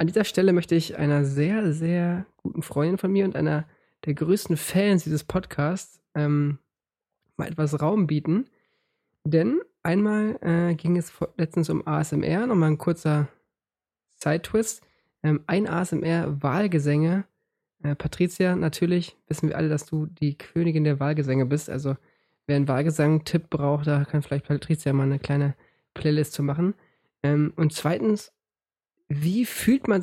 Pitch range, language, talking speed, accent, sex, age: 150-180 Hz, English, 145 wpm, German, male, 20-39